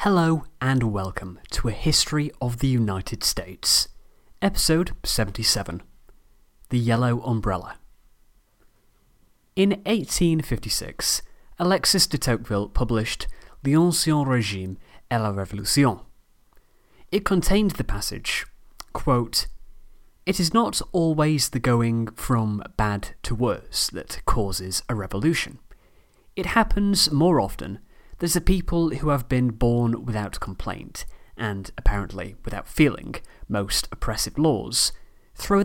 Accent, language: British, English